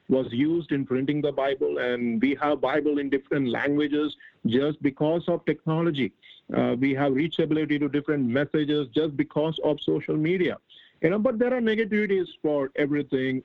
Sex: male